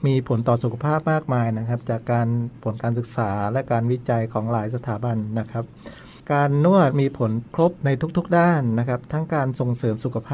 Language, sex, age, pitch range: Thai, male, 60-79, 120-150 Hz